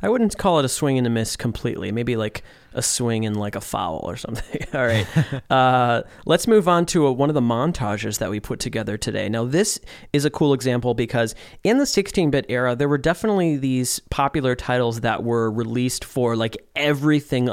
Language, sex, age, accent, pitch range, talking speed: English, male, 30-49, American, 120-155 Hz, 200 wpm